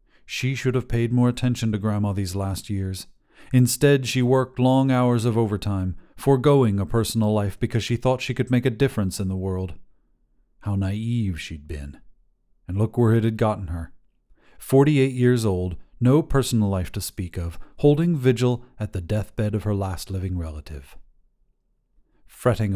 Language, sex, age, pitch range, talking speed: English, male, 40-59, 95-125 Hz, 170 wpm